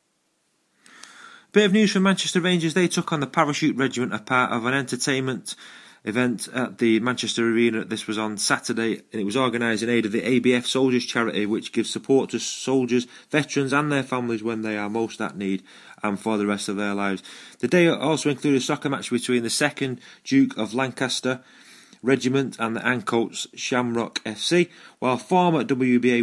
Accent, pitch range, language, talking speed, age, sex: British, 105-130 Hz, English, 190 wpm, 30-49, male